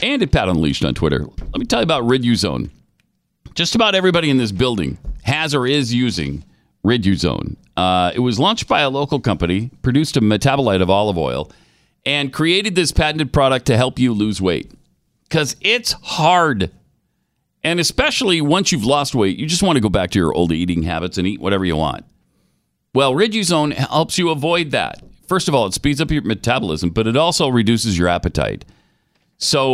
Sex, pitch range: male, 100-155 Hz